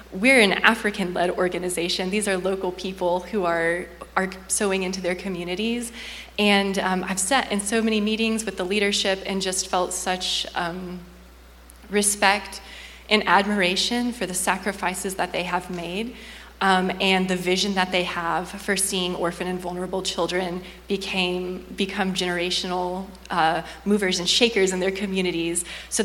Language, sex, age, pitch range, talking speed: English, female, 20-39, 180-200 Hz, 145 wpm